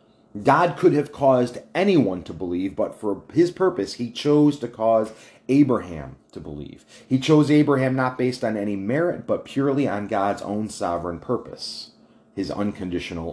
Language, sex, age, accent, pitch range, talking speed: English, male, 30-49, American, 100-140 Hz, 160 wpm